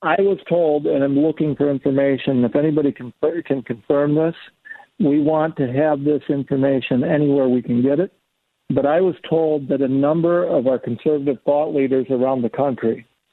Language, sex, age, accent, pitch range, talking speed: English, male, 60-79, American, 130-160 Hz, 180 wpm